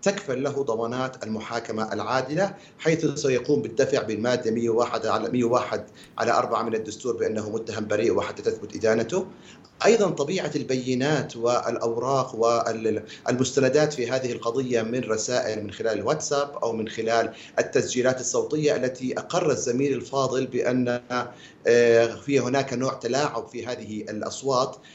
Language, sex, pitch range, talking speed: Arabic, male, 115-145 Hz, 125 wpm